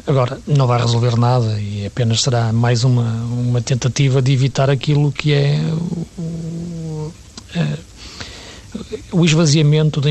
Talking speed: 135 wpm